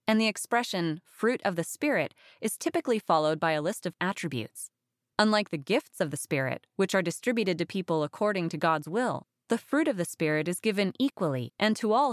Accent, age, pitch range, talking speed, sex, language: American, 20-39, 155-215 Hz, 205 wpm, female, English